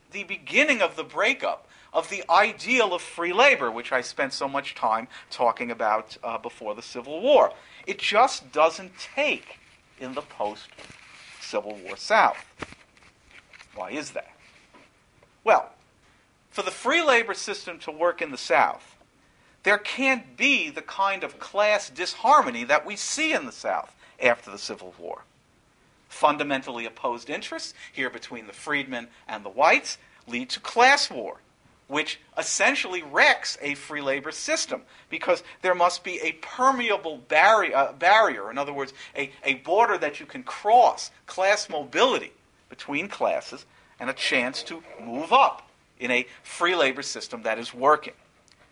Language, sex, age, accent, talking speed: English, male, 50-69, American, 150 wpm